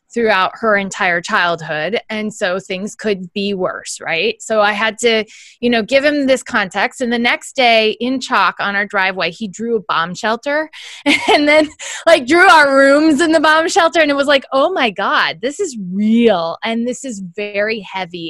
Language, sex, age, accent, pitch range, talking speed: English, female, 20-39, American, 175-250 Hz, 195 wpm